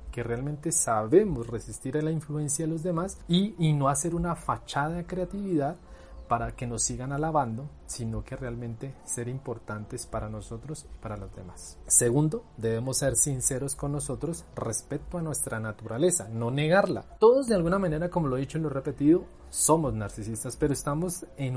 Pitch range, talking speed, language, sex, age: 120-160 Hz, 175 wpm, Spanish, male, 30-49